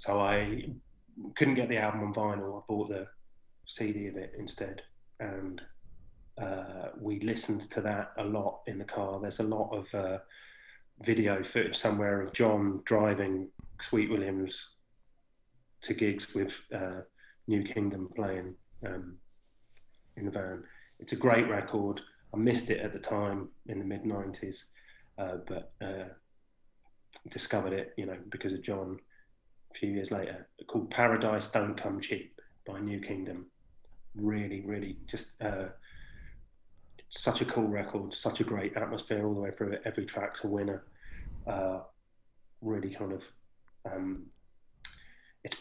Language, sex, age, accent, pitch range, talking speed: English, male, 30-49, British, 95-110 Hz, 145 wpm